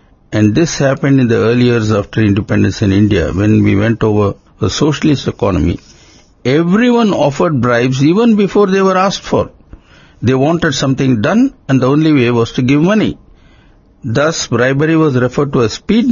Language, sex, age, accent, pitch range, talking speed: English, male, 60-79, Indian, 115-155 Hz, 170 wpm